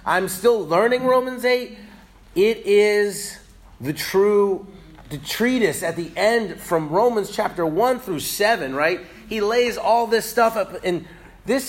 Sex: male